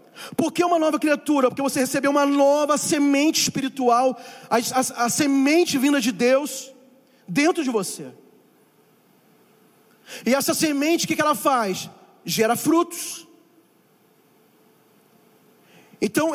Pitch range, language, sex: 235-285 Hz, Portuguese, male